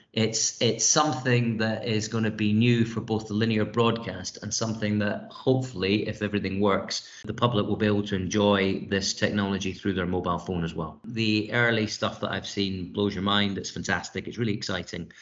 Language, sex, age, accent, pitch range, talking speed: English, male, 30-49, British, 100-115 Hz, 195 wpm